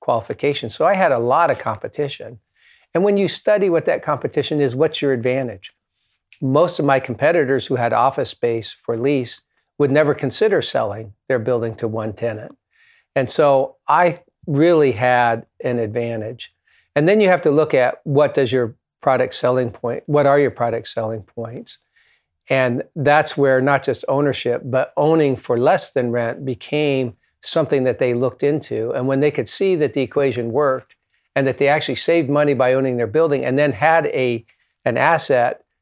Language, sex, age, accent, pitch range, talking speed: English, male, 50-69, American, 125-150 Hz, 180 wpm